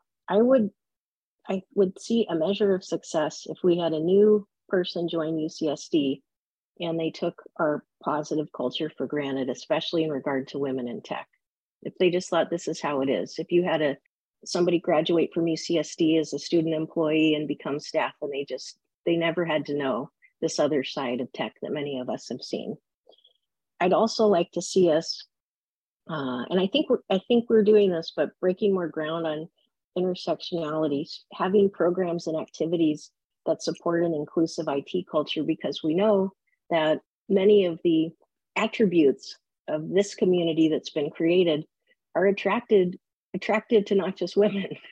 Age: 40-59